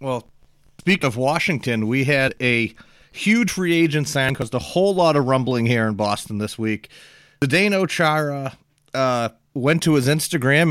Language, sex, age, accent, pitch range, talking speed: English, male, 30-49, American, 130-165 Hz, 165 wpm